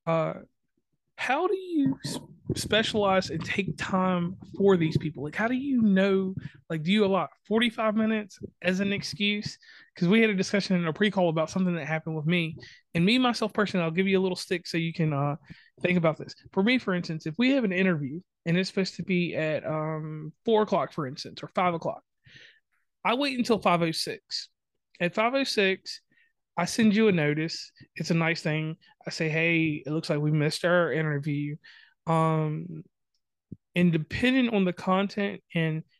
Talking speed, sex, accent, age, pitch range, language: 185 wpm, male, American, 20-39, 160-200 Hz, English